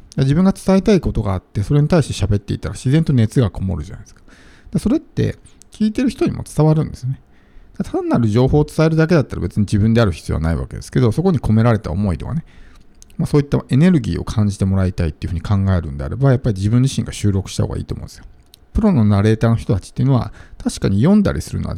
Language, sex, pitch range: Japanese, male, 100-145 Hz